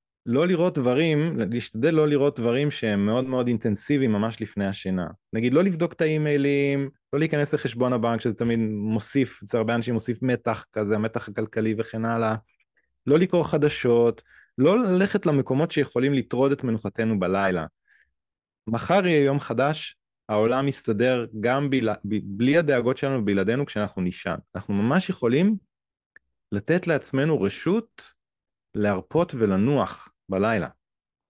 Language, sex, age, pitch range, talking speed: Hebrew, male, 30-49, 110-140 Hz, 135 wpm